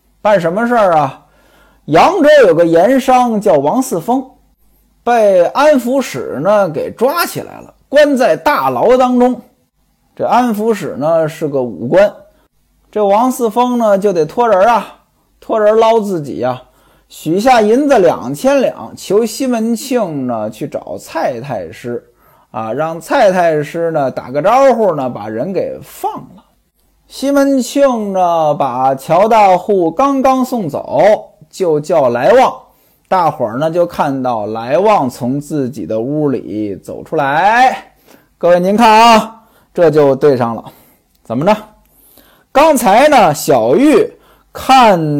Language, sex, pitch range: Chinese, male, 165-250 Hz